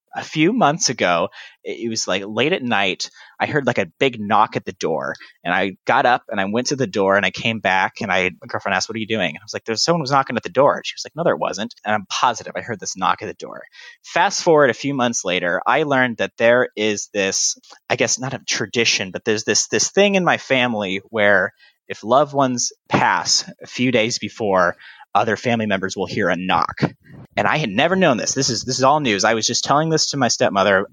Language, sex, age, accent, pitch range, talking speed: English, male, 30-49, American, 110-140 Hz, 245 wpm